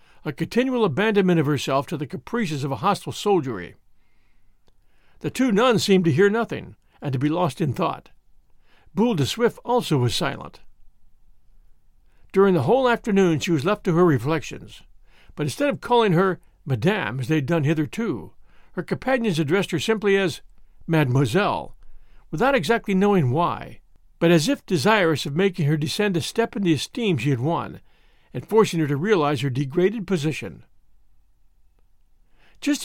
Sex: male